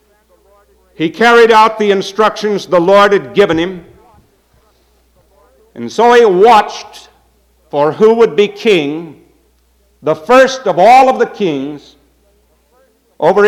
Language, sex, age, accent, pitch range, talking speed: English, male, 60-79, American, 180-225 Hz, 120 wpm